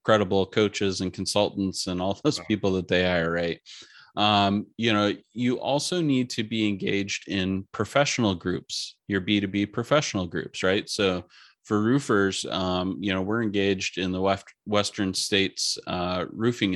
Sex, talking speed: male, 150 wpm